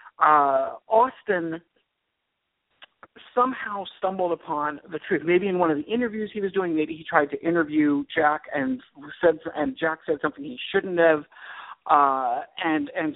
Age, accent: 50-69, American